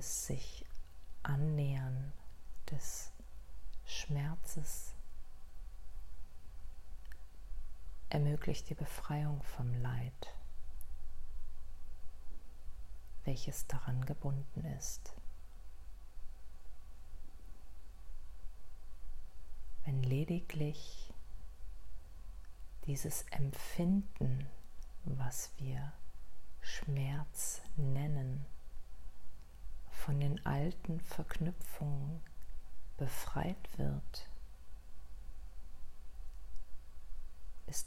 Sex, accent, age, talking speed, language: female, German, 40-59, 45 wpm, German